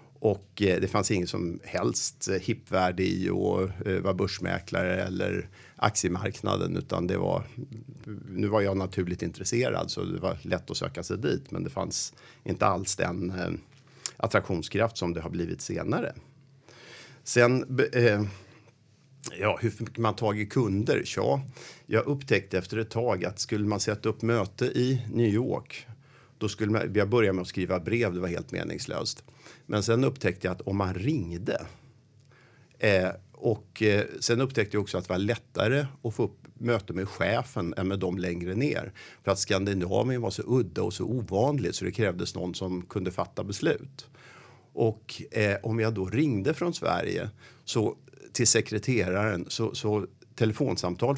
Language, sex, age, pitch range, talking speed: Swedish, male, 50-69, 95-125 Hz, 160 wpm